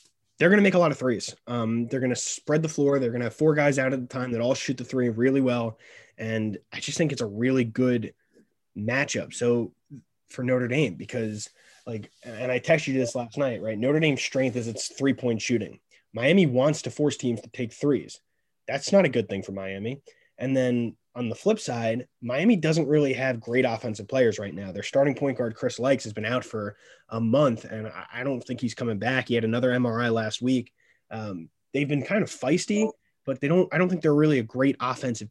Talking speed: 230 wpm